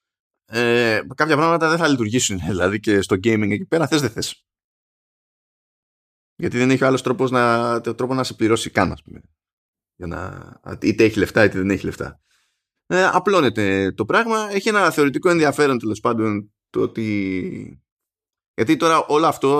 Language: Greek